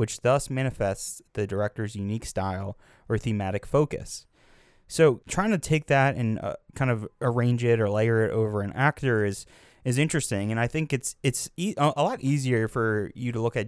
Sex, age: male, 20-39